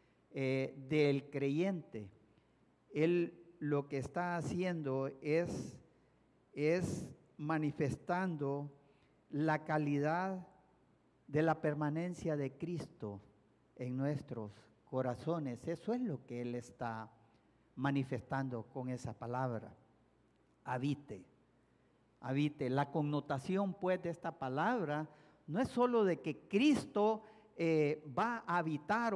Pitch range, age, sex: 135-190 Hz, 50-69, male